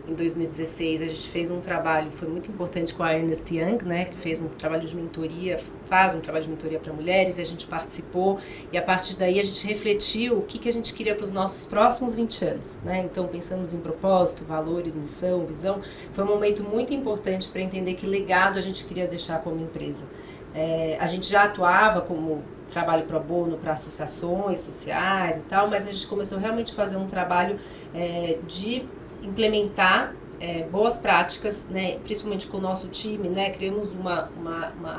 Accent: Brazilian